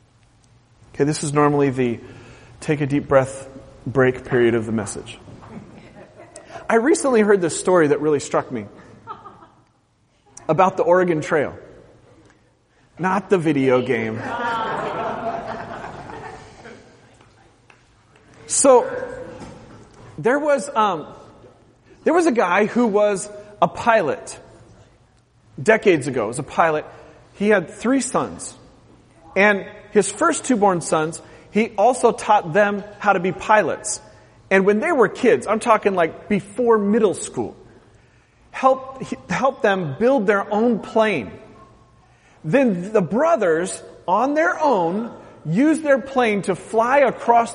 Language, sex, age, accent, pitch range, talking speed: English, male, 40-59, American, 150-230 Hz, 120 wpm